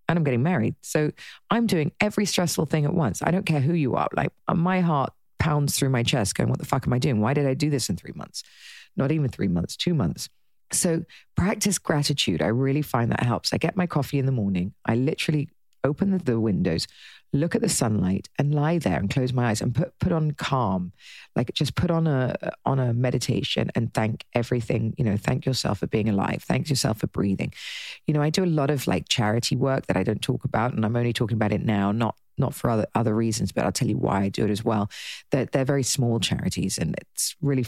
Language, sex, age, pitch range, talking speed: English, female, 40-59, 110-155 Hz, 240 wpm